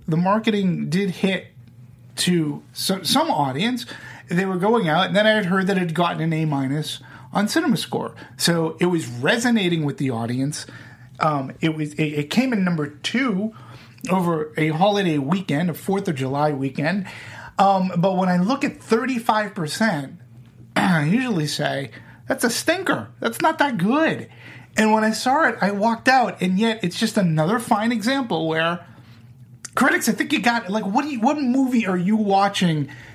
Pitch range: 150-215 Hz